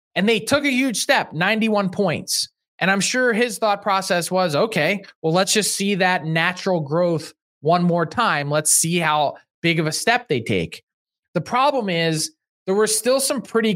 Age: 20-39